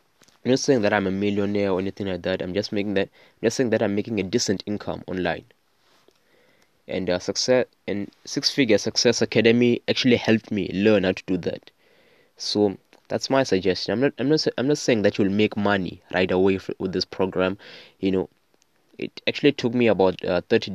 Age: 20-39